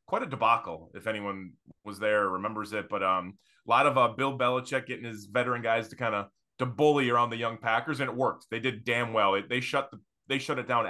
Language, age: English, 20-39